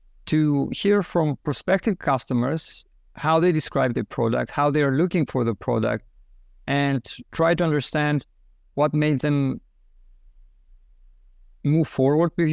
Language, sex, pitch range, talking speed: English, male, 115-145 Hz, 130 wpm